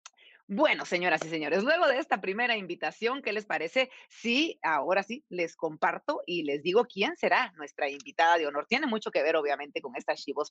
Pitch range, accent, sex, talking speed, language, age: 185-260 Hz, Mexican, female, 195 wpm, Spanish, 40-59